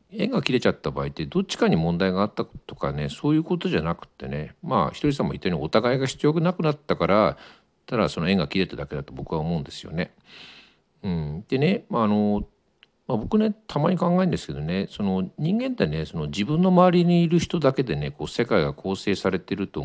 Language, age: Japanese, 50-69